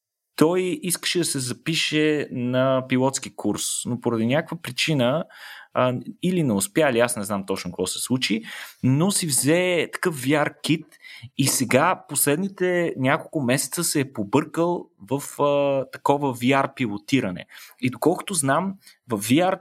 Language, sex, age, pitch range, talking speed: Bulgarian, male, 30-49, 125-155 Hz, 145 wpm